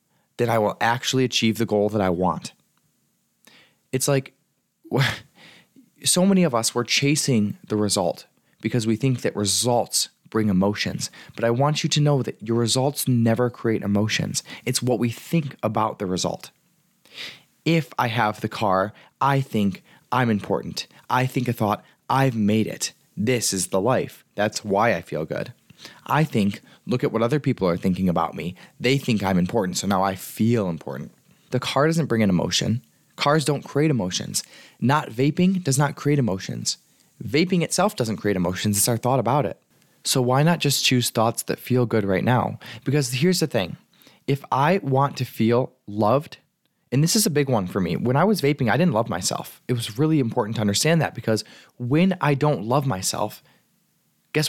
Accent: American